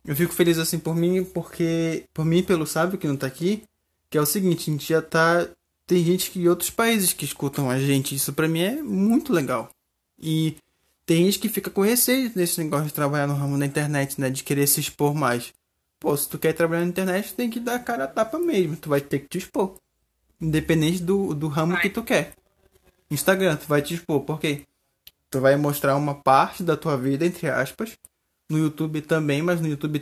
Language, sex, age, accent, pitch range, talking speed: Portuguese, male, 20-39, Brazilian, 145-185 Hz, 220 wpm